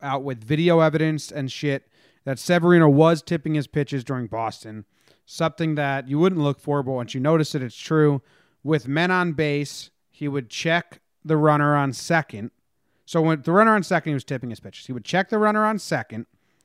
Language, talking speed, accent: English, 200 wpm, American